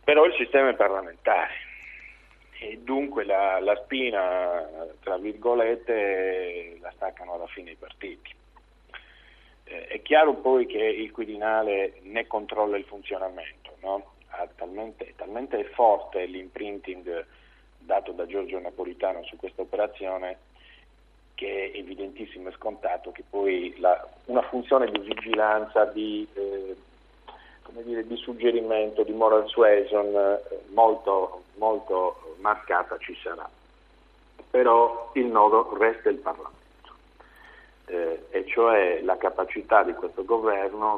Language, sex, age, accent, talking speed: Italian, male, 40-59, native, 120 wpm